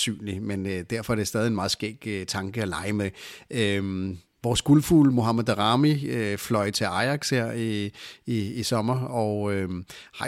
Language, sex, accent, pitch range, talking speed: Danish, male, native, 105-130 Hz, 175 wpm